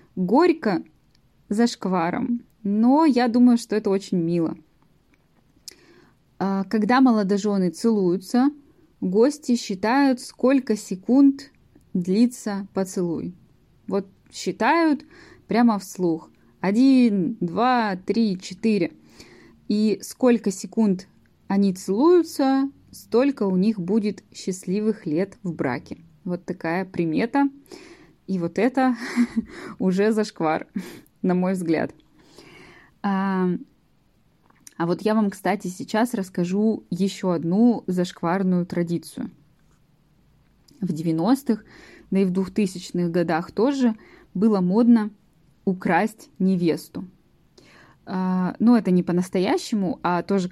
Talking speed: 95 wpm